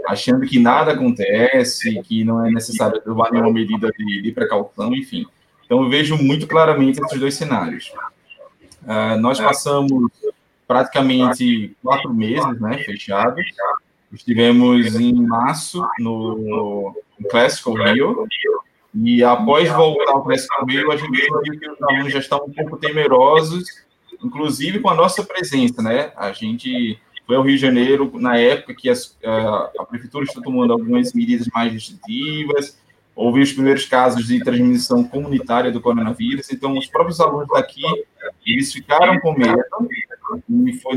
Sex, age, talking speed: male, 20-39, 145 wpm